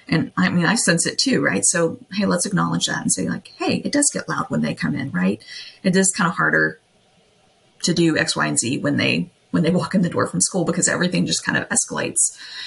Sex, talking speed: female, 250 wpm